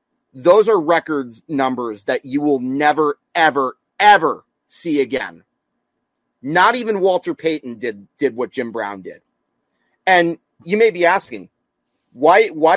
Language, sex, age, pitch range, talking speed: English, male, 30-49, 115-150 Hz, 135 wpm